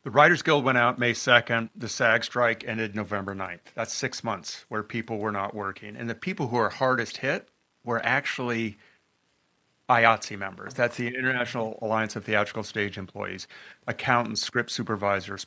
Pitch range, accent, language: 105-130 Hz, American, English